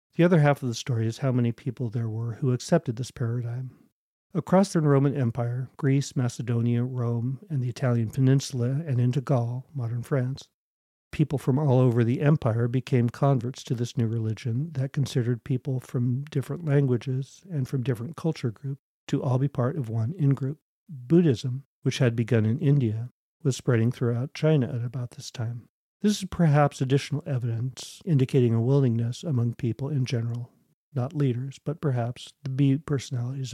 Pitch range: 120-140 Hz